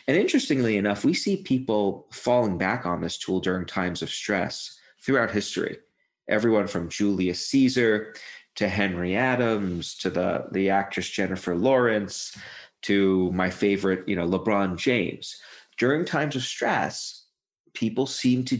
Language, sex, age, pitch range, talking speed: English, male, 40-59, 95-135 Hz, 140 wpm